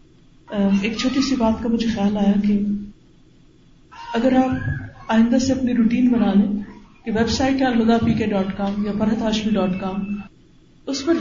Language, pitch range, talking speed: Urdu, 210-275 Hz, 180 wpm